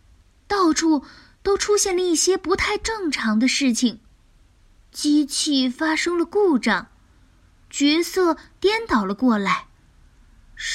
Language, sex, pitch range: Chinese, female, 225-320 Hz